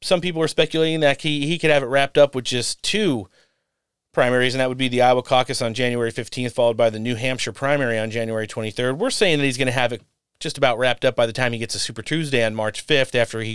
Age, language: 30-49, English